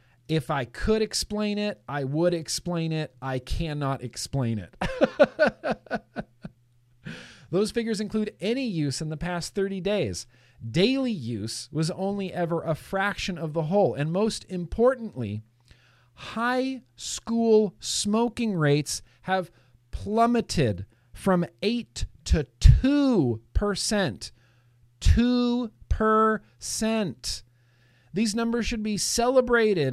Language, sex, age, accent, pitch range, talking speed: English, male, 40-59, American, 125-205 Hz, 105 wpm